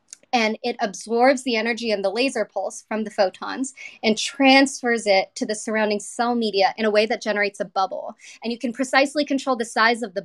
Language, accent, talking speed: English, American, 210 wpm